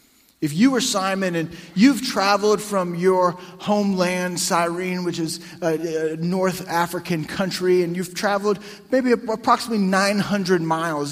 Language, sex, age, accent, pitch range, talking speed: English, male, 30-49, American, 180-220 Hz, 130 wpm